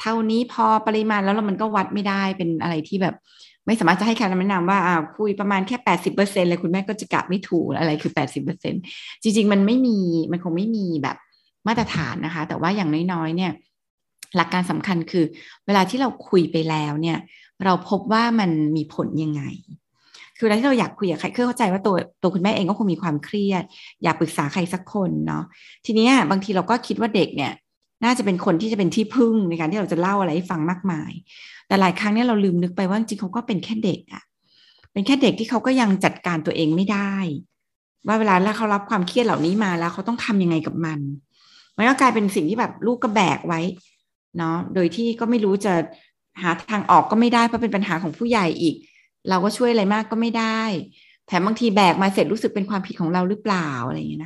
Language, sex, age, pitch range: Thai, female, 30-49, 170-220 Hz